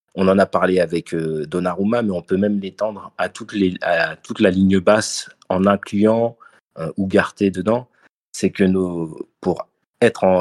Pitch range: 90-105 Hz